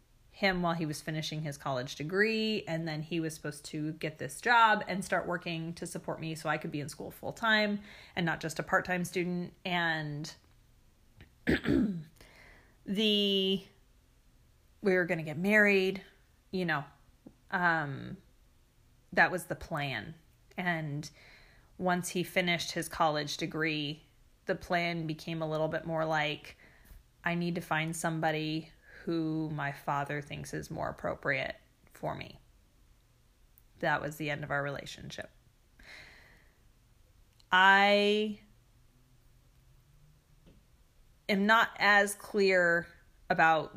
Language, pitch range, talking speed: English, 150-185 Hz, 130 wpm